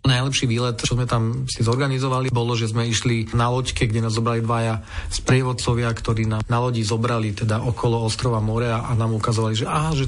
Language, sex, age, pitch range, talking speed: Slovak, male, 40-59, 115-130 Hz, 195 wpm